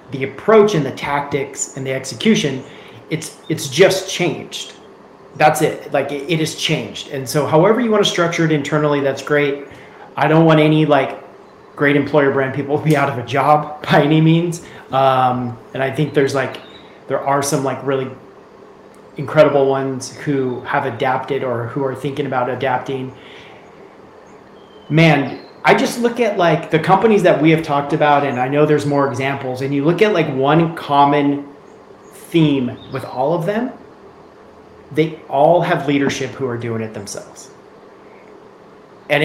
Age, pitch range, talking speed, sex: 30-49, 135-160 Hz, 170 wpm, male